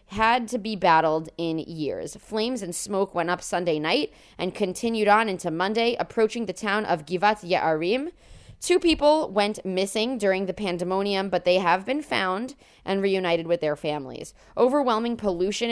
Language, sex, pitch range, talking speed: English, female, 175-225 Hz, 165 wpm